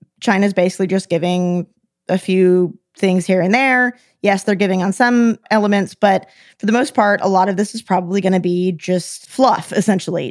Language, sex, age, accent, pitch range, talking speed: English, female, 20-39, American, 185-230 Hz, 190 wpm